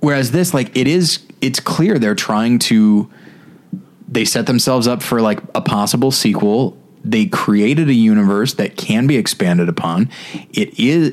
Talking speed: 160 wpm